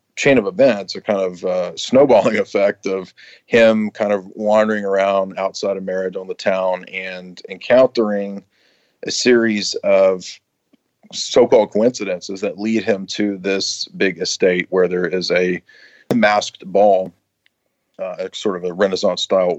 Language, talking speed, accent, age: English, 140 wpm, American, 40-59